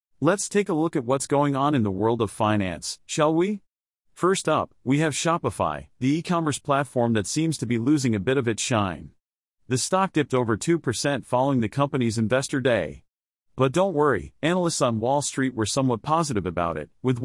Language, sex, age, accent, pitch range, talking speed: English, male, 40-59, American, 110-150 Hz, 195 wpm